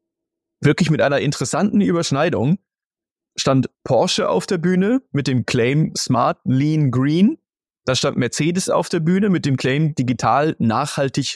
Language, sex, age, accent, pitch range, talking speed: German, male, 20-39, German, 130-185 Hz, 145 wpm